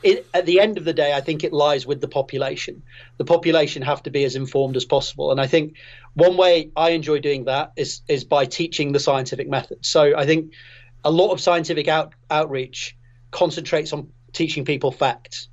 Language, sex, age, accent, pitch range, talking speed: English, male, 30-49, British, 135-165 Hz, 195 wpm